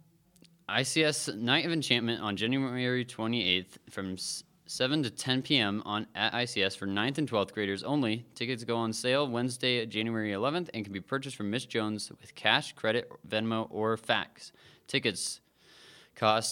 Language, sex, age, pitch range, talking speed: English, male, 20-39, 105-135 Hz, 155 wpm